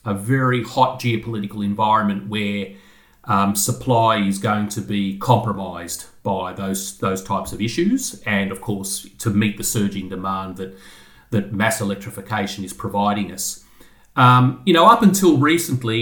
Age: 30-49